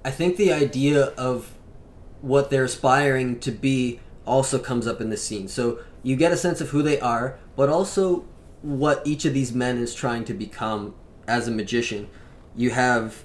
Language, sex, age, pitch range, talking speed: English, male, 20-39, 110-135 Hz, 185 wpm